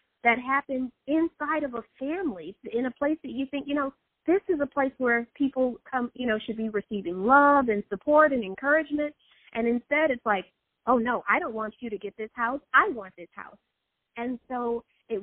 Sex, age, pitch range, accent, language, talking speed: female, 40-59, 205-265 Hz, American, English, 205 wpm